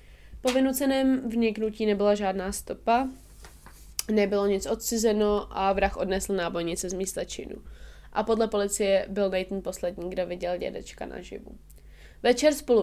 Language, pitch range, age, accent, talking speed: Czech, 195-225 Hz, 20-39, native, 125 wpm